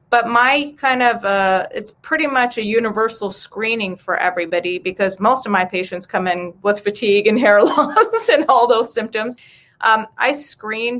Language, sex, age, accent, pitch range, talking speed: English, female, 30-49, American, 195-245 Hz, 175 wpm